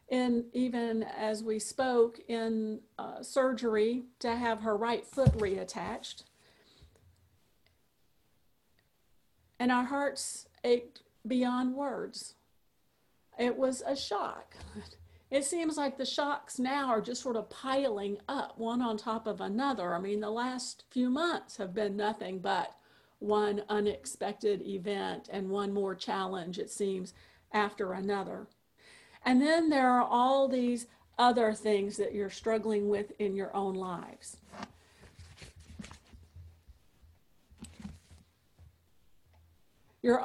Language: English